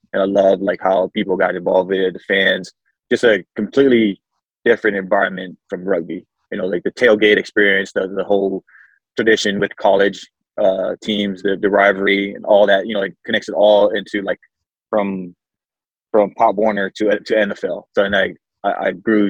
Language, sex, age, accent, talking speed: English, male, 20-39, American, 190 wpm